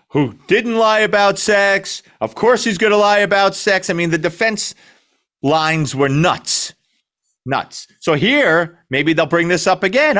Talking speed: 170 wpm